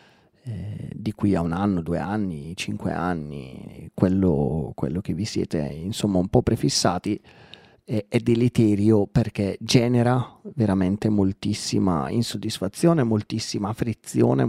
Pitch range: 95-120 Hz